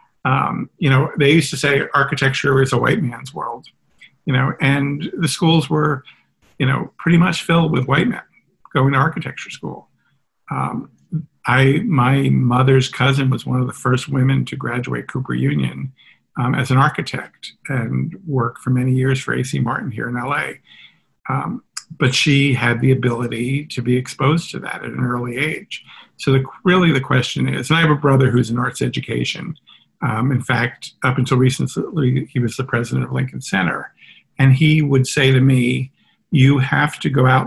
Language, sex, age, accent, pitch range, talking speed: English, male, 50-69, American, 125-140 Hz, 185 wpm